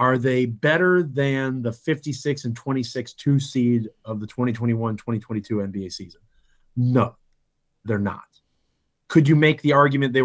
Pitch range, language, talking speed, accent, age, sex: 105-130 Hz, English, 130 wpm, American, 30-49, male